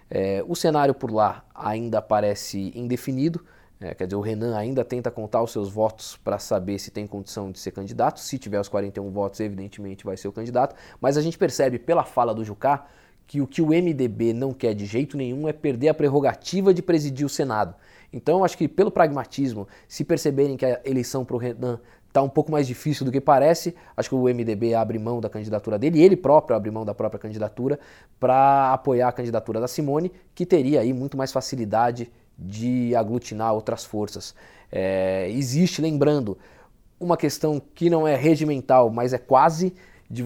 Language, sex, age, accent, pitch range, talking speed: Portuguese, male, 20-39, Brazilian, 110-145 Hz, 190 wpm